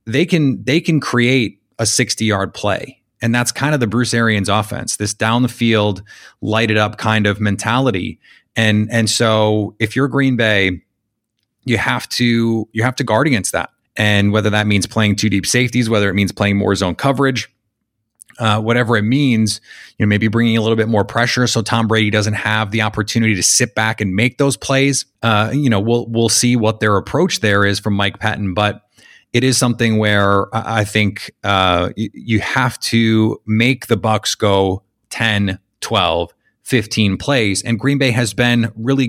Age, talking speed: 30-49, 190 wpm